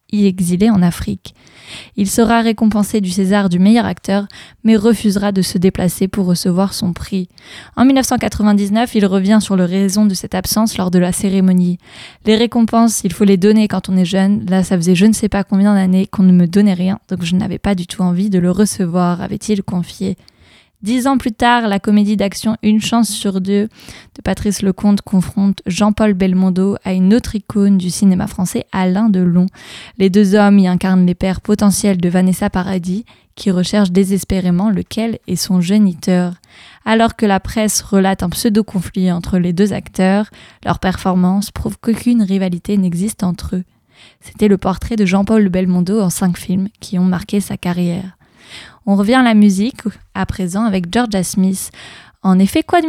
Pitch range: 185-215 Hz